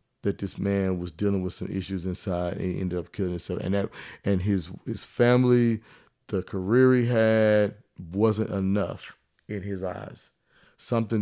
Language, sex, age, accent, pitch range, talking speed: English, male, 30-49, American, 95-115 Hz, 165 wpm